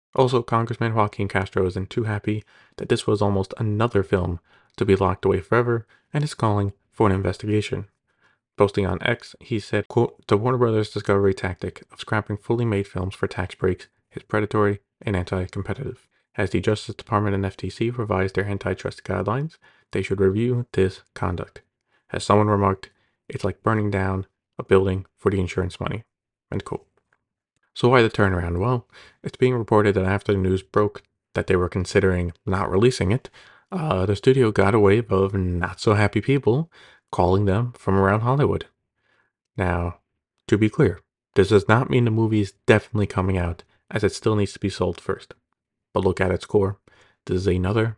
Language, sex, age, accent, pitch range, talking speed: English, male, 20-39, American, 95-115 Hz, 180 wpm